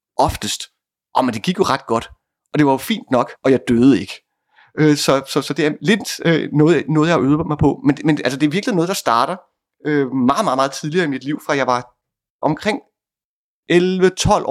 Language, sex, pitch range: Danish, male, 120-150 Hz